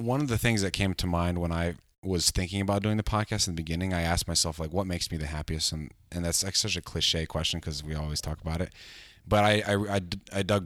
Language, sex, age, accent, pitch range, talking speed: English, male, 30-49, American, 80-95 Hz, 260 wpm